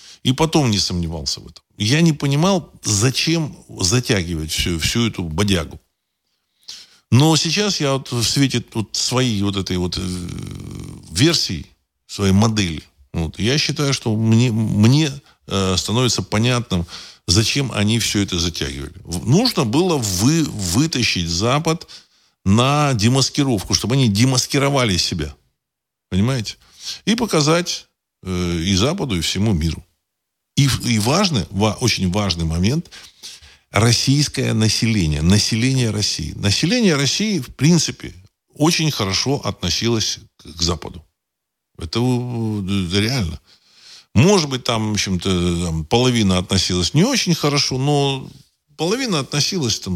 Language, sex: Russian, male